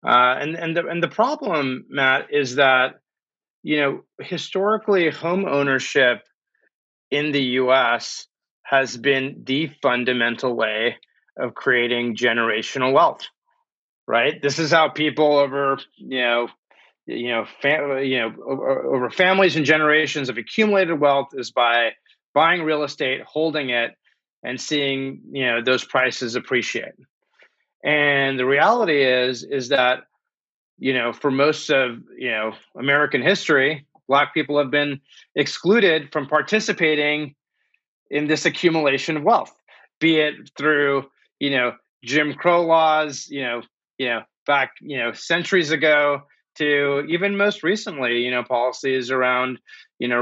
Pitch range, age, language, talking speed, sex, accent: 130-155 Hz, 30-49, English, 140 wpm, male, American